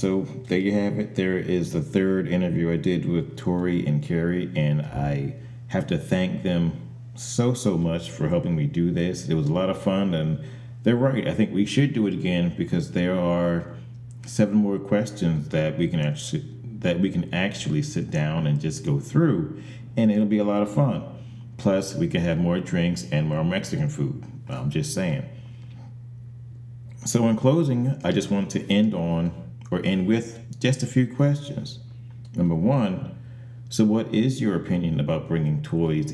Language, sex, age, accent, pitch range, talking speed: English, male, 40-59, American, 90-120 Hz, 180 wpm